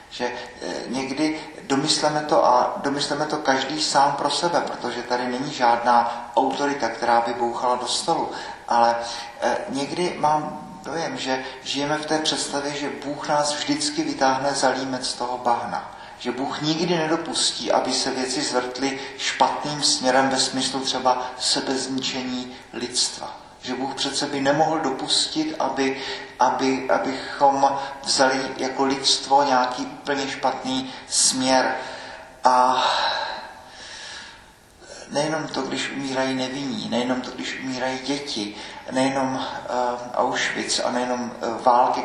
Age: 40-59